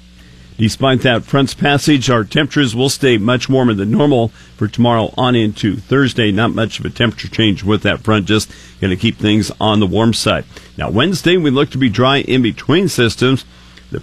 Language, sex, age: English, male, 50-69